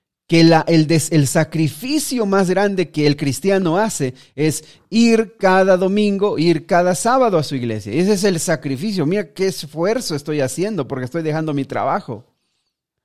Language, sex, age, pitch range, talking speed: Spanish, male, 40-59, 125-180 Hz, 155 wpm